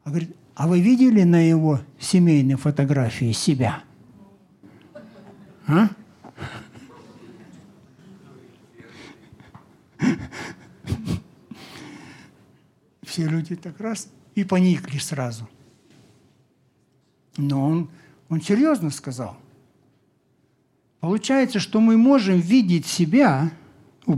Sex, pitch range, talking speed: male, 135-190 Hz, 70 wpm